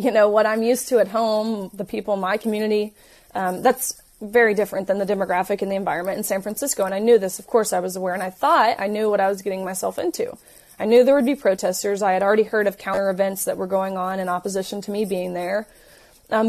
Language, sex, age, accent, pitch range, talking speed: English, female, 20-39, American, 195-225 Hz, 255 wpm